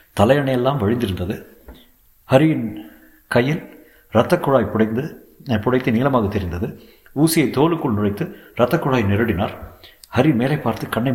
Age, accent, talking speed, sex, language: 60-79, native, 100 wpm, male, Tamil